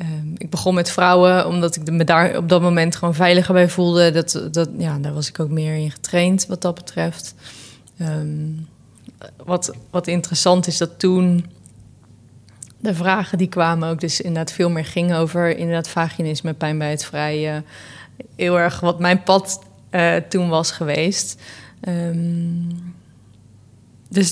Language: Dutch